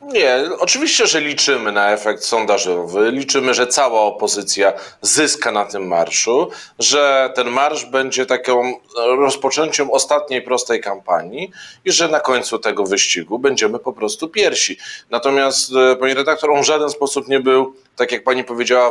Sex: male